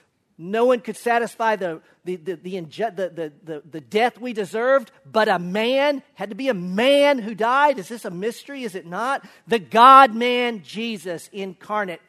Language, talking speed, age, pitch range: English, 150 wpm, 40-59, 165-220 Hz